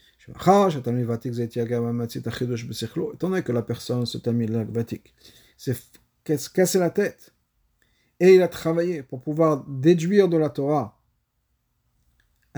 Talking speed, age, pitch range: 90 wpm, 50-69, 120-170 Hz